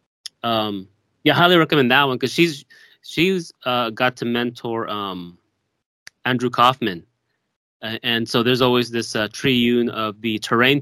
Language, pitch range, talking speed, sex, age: English, 110-125 Hz, 150 wpm, male, 20-39